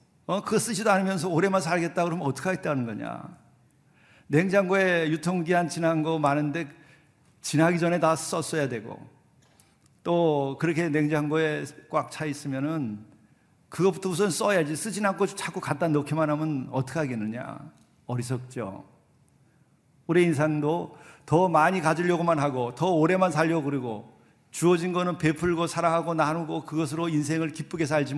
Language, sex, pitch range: Korean, male, 130-165 Hz